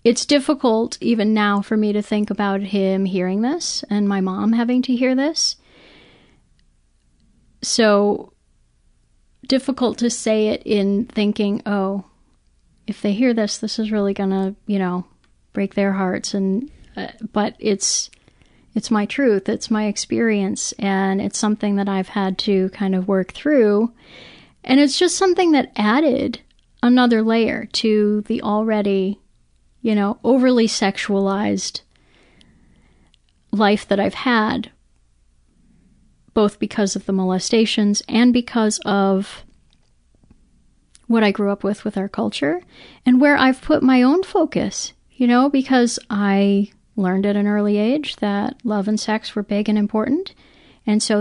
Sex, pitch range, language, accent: female, 200-240 Hz, English, American